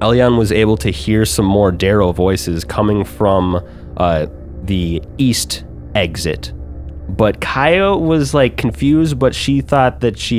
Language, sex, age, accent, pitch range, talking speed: English, male, 30-49, American, 90-105 Hz, 145 wpm